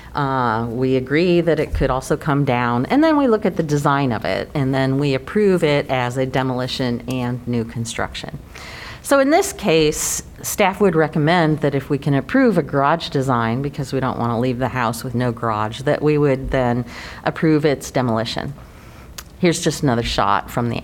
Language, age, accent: English, 40-59, American